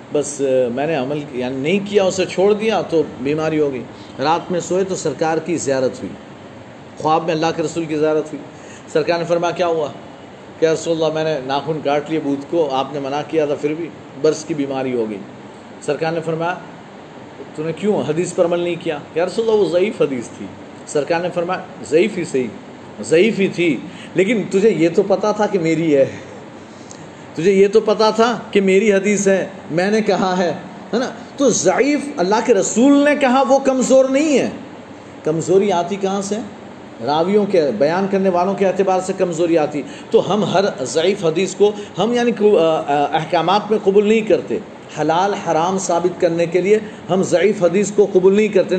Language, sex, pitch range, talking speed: Urdu, male, 160-205 Hz, 195 wpm